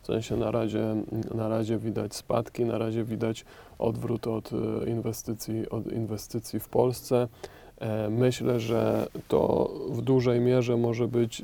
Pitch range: 110-120 Hz